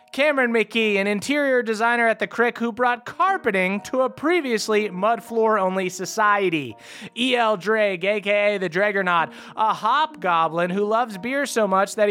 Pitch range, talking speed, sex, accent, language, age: 200-240 Hz, 155 wpm, male, American, English, 30-49